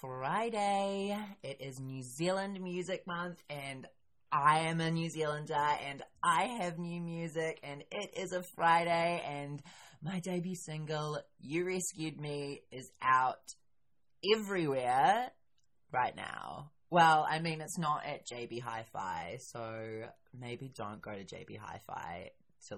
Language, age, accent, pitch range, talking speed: English, 20-39, Australian, 135-180 Hz, 135 wpm